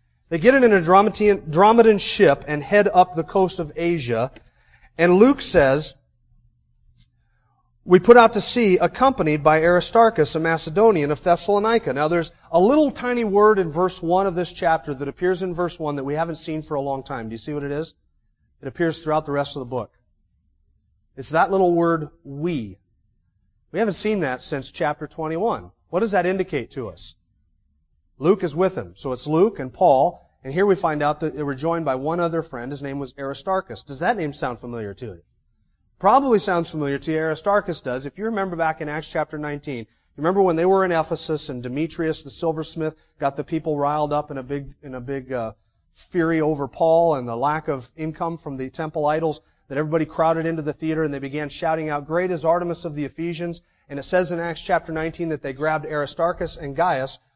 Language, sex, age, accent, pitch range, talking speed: English, male, 30-49, American, 135-175 Hz, 205 wpm